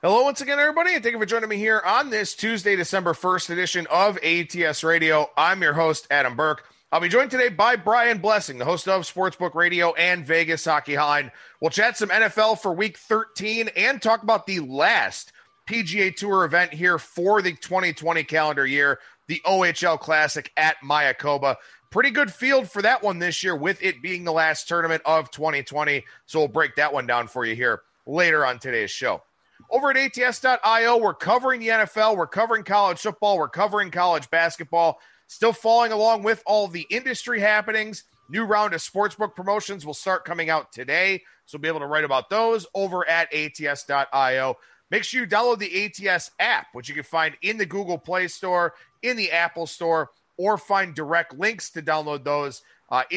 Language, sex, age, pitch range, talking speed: English, male, 30-49, 155-215 Hz, 190 wpm